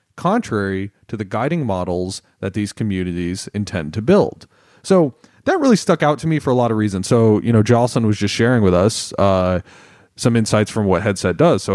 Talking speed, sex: 205 wpm, male